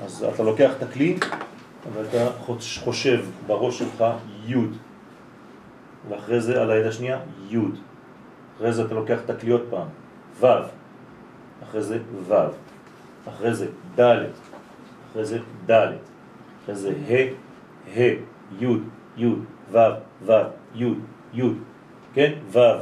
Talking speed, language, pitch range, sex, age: 105 wpm, French, 115-150 Hz, male, 40-59